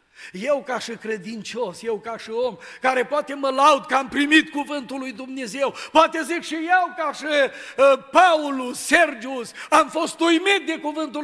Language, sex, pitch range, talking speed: Romanian, male, 200-280 Hz, 170 wpm